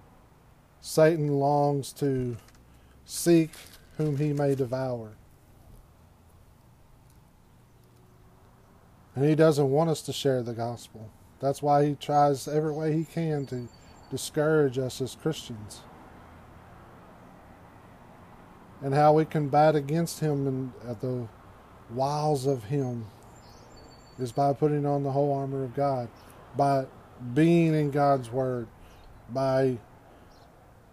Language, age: English, 40-59